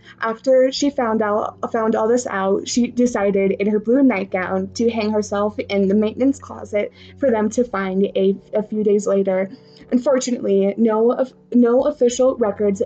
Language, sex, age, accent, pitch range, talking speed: English, female, 20-39, American, 195-230 Hz, 165 wpm